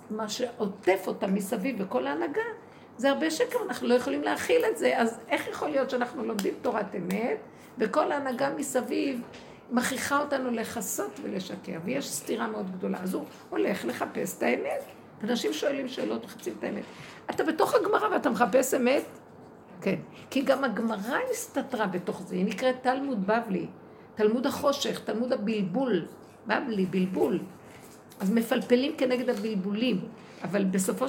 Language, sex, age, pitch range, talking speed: Hebrew, female, 50-69, 200-260 Hz, 145 wpm